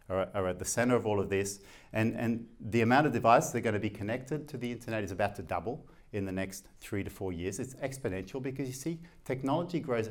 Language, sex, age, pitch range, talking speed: English, male, 50-69, 100-145 Hz, 245 wpm